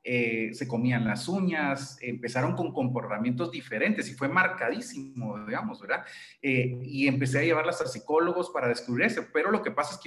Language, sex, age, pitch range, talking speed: Spanish, male, 40-59, 125-185 Hz, 180 wpm